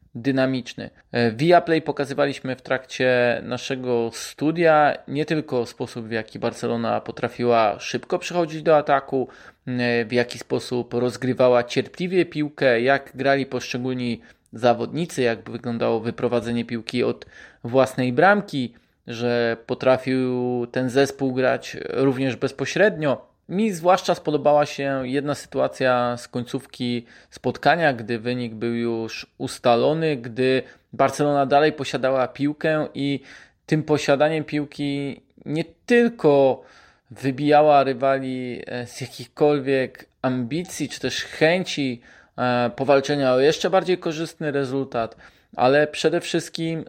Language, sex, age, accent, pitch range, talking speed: Polish, male, 20-39, native, 120-150 Hz, 110 wpm